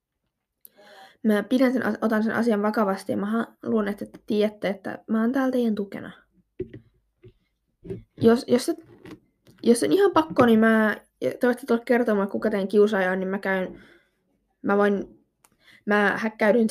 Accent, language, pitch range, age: native, Finnish, 200-245 Hz, 20-39